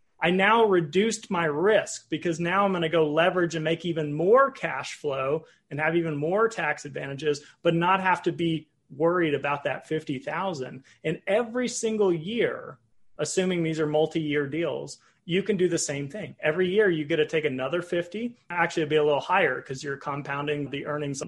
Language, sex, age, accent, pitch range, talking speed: English, male, 30-49, American, 150-180 Hz, 190 wpm